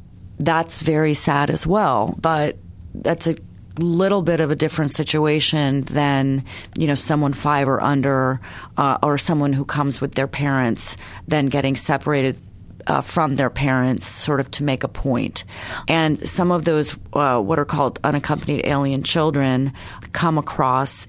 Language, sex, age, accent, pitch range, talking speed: English, female, 30-49, American, 130-155 Hz, 155 wpm